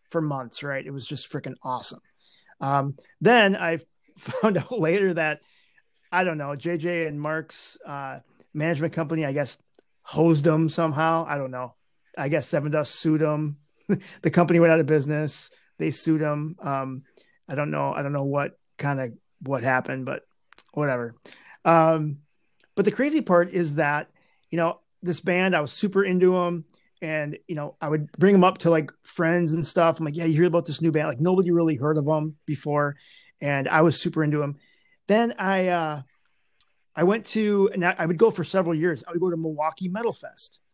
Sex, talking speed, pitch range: male, 195 wpm, 150-180 Hz